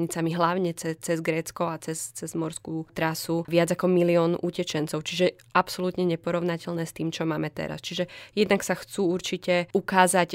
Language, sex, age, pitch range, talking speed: Slovak, female, 20-39, 165-180 Hz, 155 wpm